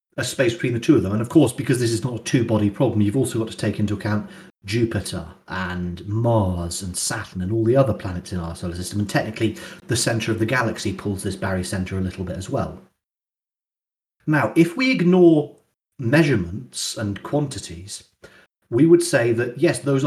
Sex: male